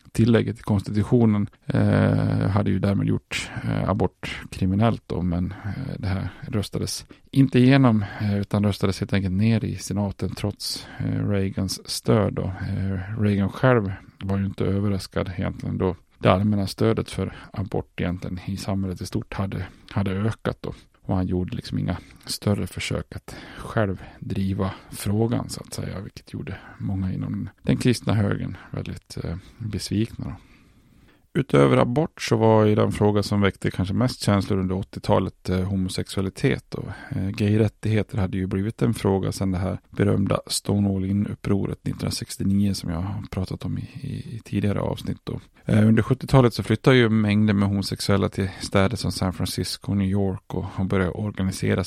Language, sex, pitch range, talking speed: Swedish, male, 95-110 Hz, 160 wpm